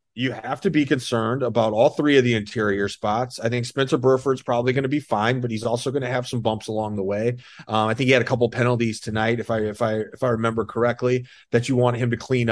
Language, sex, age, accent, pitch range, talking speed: English, male, 30-49, American, 125-150 Hz, 265 wpm